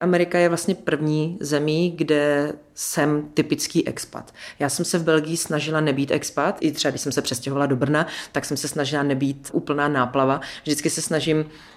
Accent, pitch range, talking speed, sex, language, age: native, 140-155 Hz, 180 wpm, female, Czech, 30-49